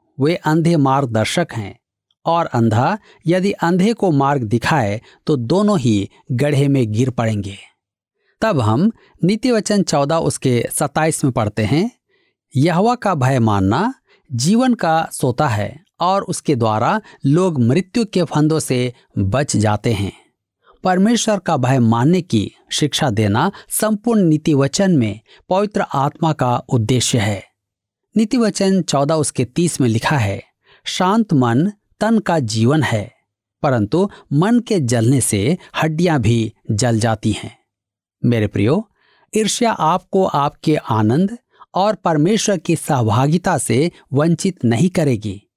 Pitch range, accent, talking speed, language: 120-185 Hz, native, 130 wpm, Hindi